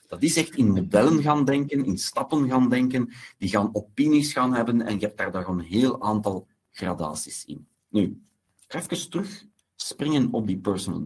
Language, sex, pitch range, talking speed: Dutch, male, 105-160 Hz, 180 wpm